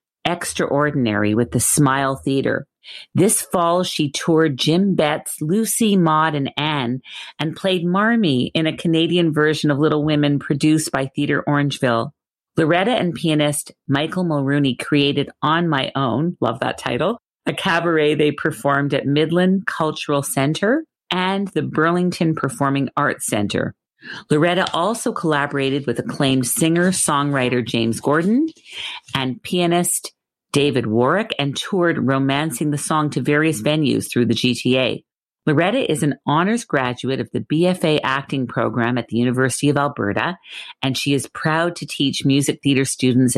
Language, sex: English, female